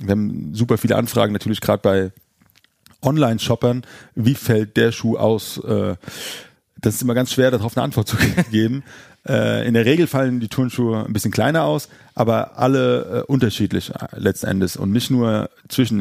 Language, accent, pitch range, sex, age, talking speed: German, German, 105-125 Hz, male, 30-49, 160 wpm